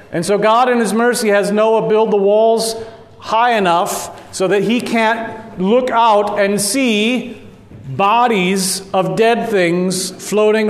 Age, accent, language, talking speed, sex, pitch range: 40-59, American, English, 145 wpm, male, 165-210 Hz